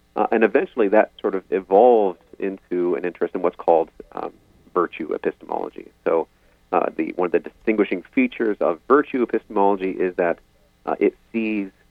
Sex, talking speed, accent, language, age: male, 160 wpm, American, English, 40-59